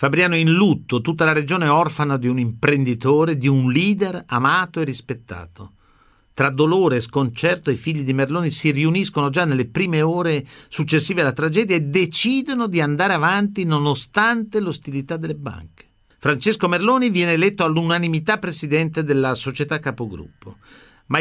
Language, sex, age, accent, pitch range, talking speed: Italian, male, 50-69, native, 135-180 Hz, 145 wpm